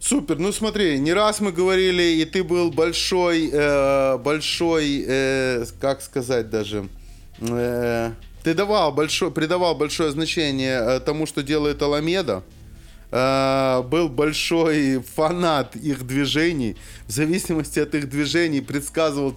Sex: male